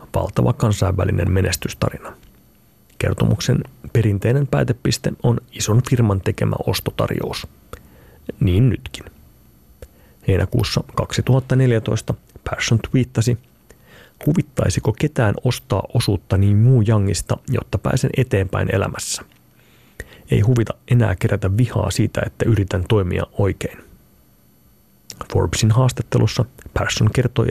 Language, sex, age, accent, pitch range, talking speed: Finnish, male, 30-49, native, 100-120 Hz, 90 wpm